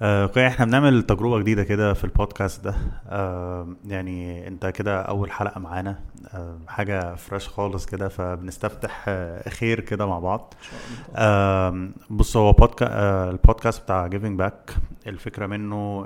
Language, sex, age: Arabic, male, 30-49